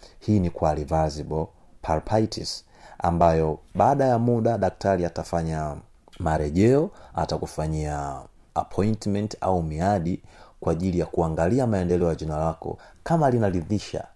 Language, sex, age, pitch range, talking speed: Swahili, male, 30-49, 85-120 Hz, 110 wpm